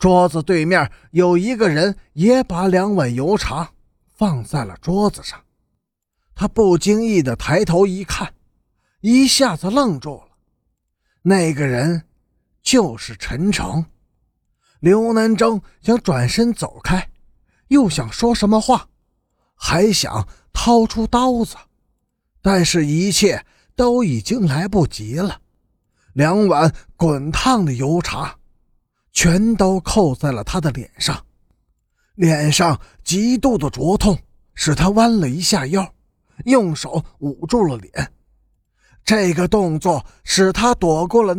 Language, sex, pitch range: Chinese, male, 150-215 Hz